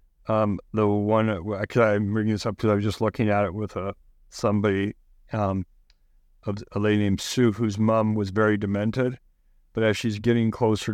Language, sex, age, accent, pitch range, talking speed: English, male, 50-69, American, 105-120 Hz, 180 wpm